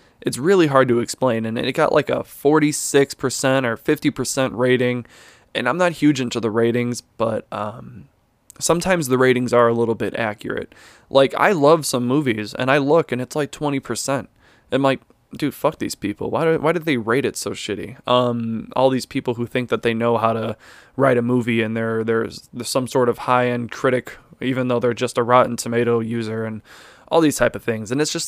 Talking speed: 205 wpm